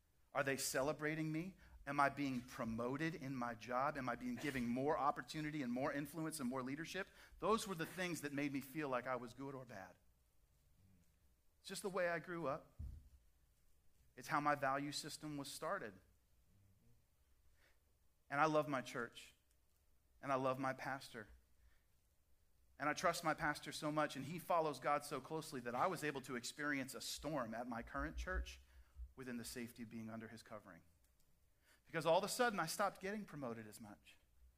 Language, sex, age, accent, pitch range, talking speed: English, male, 40-59, American, 100-145 Hz, 180 wpm